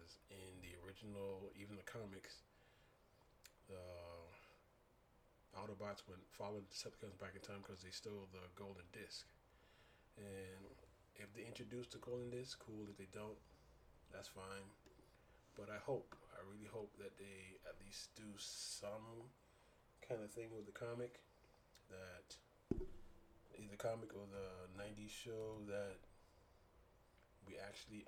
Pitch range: 95-105 Hz